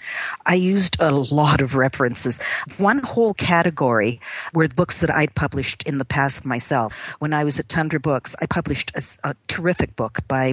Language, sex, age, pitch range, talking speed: English, female, 50-69, 125-150 Hz, 175 wpm